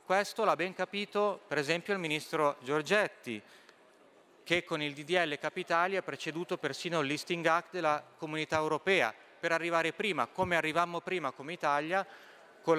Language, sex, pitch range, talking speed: Italian, male, 140-185 Hz, 150 wpm